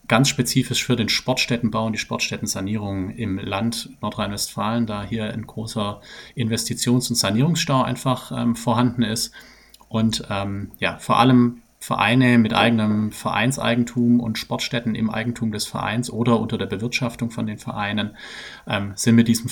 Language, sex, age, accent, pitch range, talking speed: German, male, 30-49, German, 110-125 Hz, 150 wpm